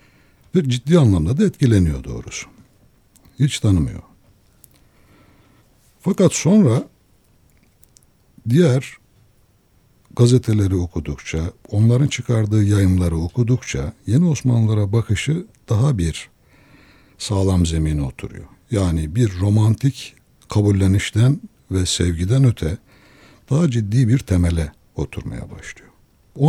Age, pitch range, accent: 60-79, 90-125 Hz, native